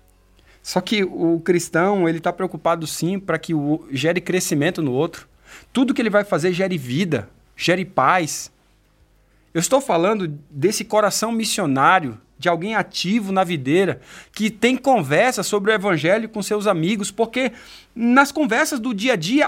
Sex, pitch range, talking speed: male, 180-245 Hz, 150 wpm